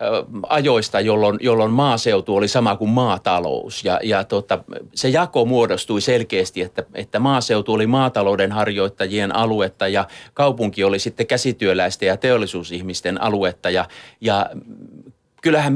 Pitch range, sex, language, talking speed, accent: 95-125 Hz, male, Finnish, 125 wpm, native